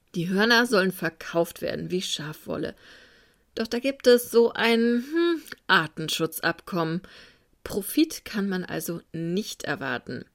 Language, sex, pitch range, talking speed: German, female, 165-220 Hz, 120 wpm